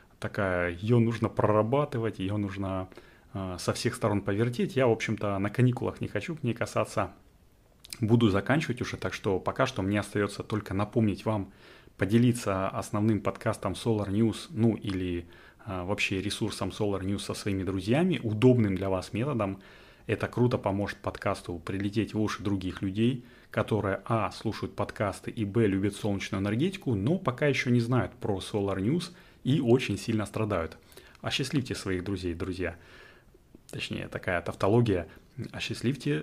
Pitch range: 95-115 Hz